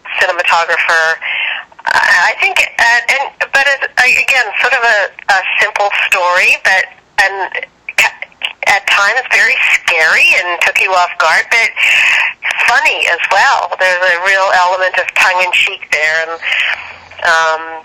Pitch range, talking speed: 165-195 Hz, 130 wpm